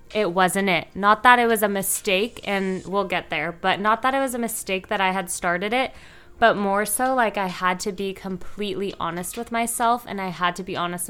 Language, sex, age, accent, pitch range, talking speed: English, female, 20-39, American, 185-220 Hz, 235 wpm